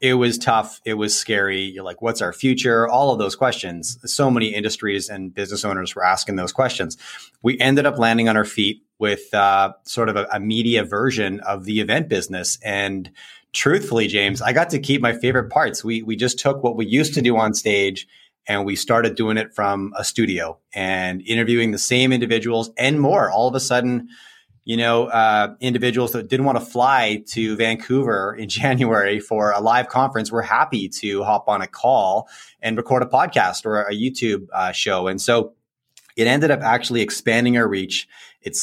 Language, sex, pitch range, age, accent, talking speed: English, male, 100-125 Hz, 30-49, American, 195 wpm